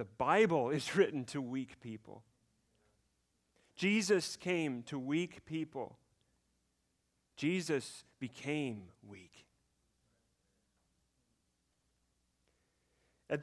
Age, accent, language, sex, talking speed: 40-59, American, English, male, 70 wpm